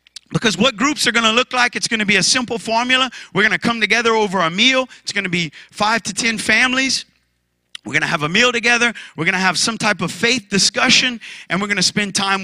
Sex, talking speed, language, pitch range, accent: male, 255 wpm, English, 185-240 Hz, American